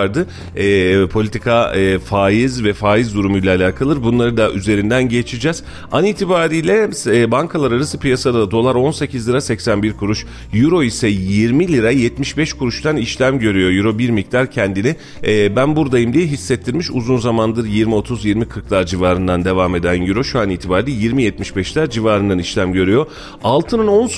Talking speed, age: 140 wpm, 40-59